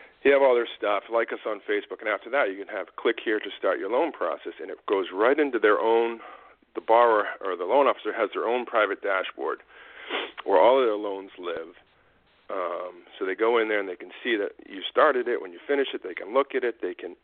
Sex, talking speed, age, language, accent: male, 245 wpm, 50-69, English, American